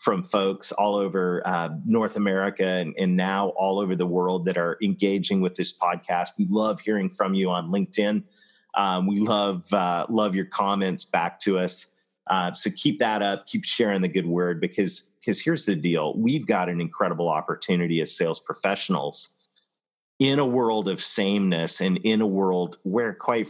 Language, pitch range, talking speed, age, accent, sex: English, 90-105 Hz, 180 wpm, 30-49, American, male